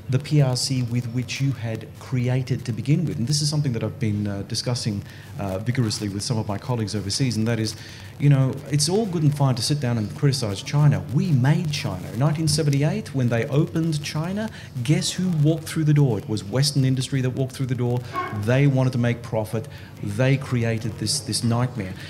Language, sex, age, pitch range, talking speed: English, male, 30-49, 115-140 Hz, 210 wpm